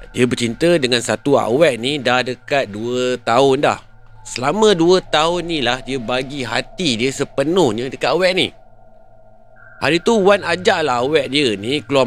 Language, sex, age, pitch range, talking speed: Malay, male, 30-49, 110-155 Hz, 160 wpm